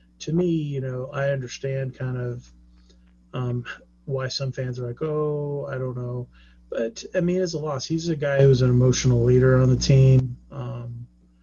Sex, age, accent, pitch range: male, 30-49, American, 120-135 Hz